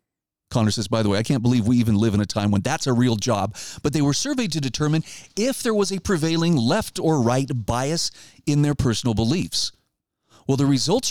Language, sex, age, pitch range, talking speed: English, male, 40-59, 120-165 Hz, 220 wpm